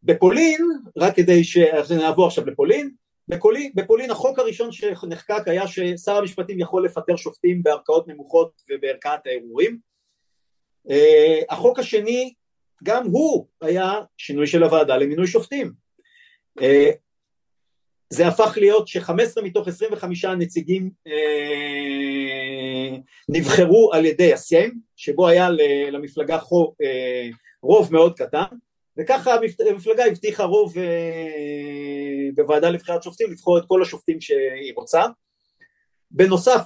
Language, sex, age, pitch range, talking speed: Hebrew, male, 50-69, 160-255 Hz, 105 wpm